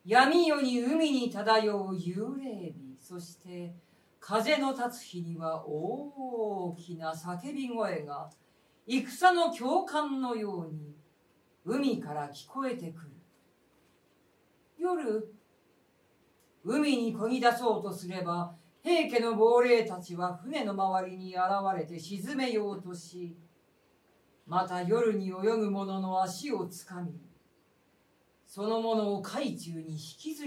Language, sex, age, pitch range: Japanese, female, 40-59, 175-255 Hz